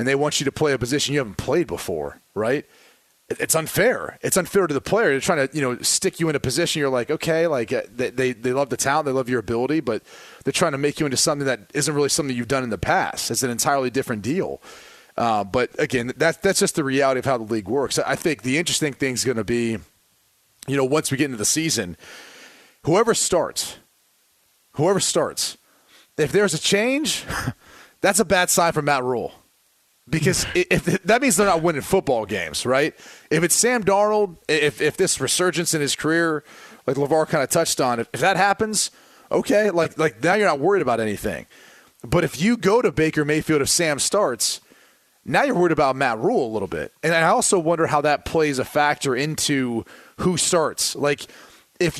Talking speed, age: 215 wpm, 30-49